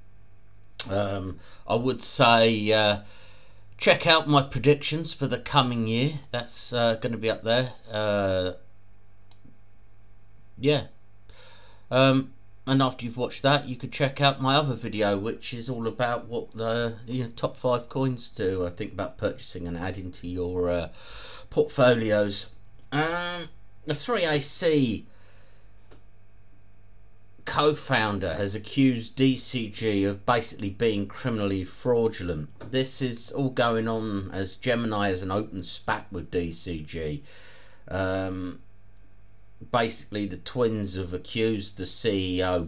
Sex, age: male, 40-59